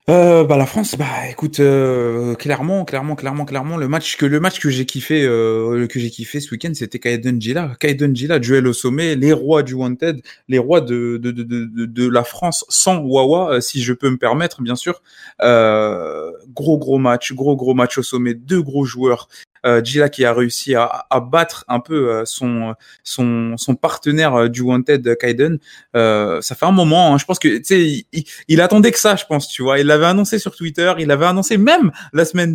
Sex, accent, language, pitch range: male, French, French, 125-170 Hz